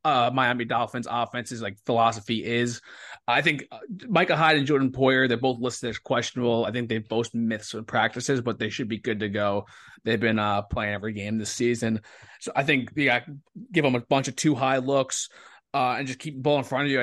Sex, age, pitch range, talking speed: male, 20-39, 115-135 Hz, 220 wpm